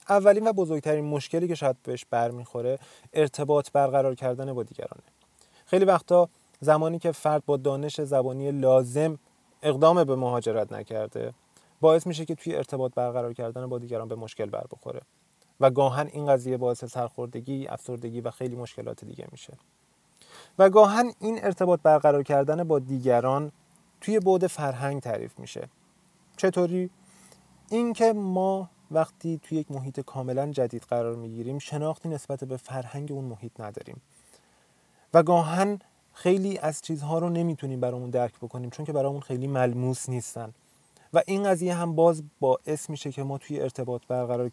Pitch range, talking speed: 125-170 Hz, 150 wpm